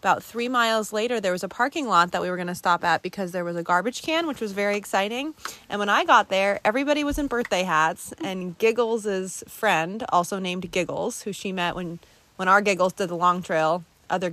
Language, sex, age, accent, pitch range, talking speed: English, female, 20-39, American, 180-240 Hz, 225 wpm